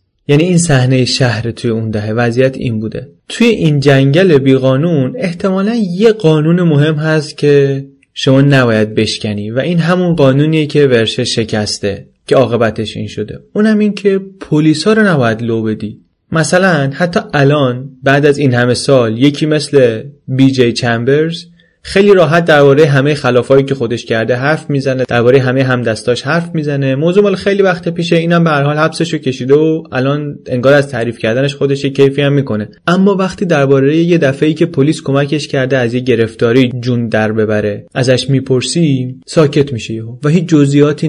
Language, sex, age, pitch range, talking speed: Persian, male, 30-49, 120-155 Hz, 165 wpm